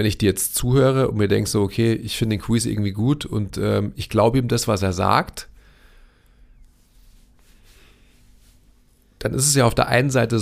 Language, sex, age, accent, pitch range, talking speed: German, male, 40-59, German, 105-125 Hz, 190 wpm